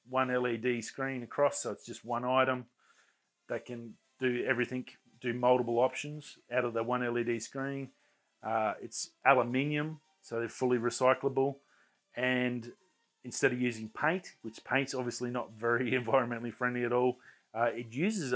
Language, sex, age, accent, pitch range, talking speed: English, male, 30-49, Australian, 120-130 Hz, 150 wpm